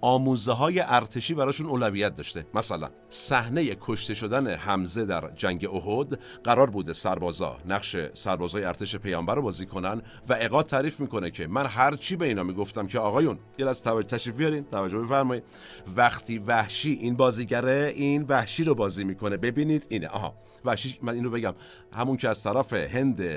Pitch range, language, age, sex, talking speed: 100-135 Hz, Persian, 50-69, male, 160 wpm